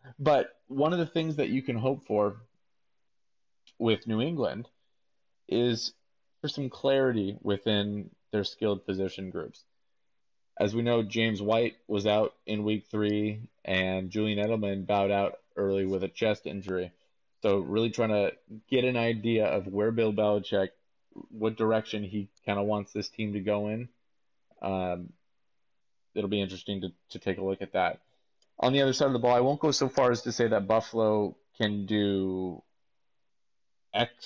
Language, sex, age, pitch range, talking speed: English, male, 30-49, 100-120 Hz, 165 wpm